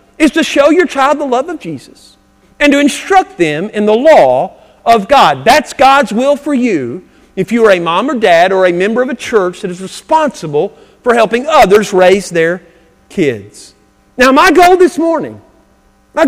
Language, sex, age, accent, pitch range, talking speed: English, male, 50-69, American, 230-315 Hz, 190 wpm